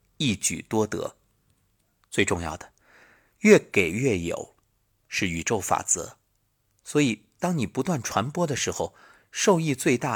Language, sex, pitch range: Chinese, male, 100-135 Hz